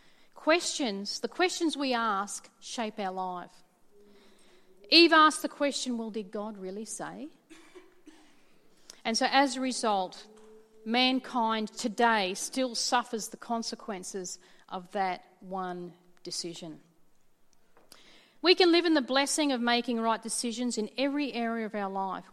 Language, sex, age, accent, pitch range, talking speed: English, female, 40-59, Australian, 200-275 Hz, 130 wpm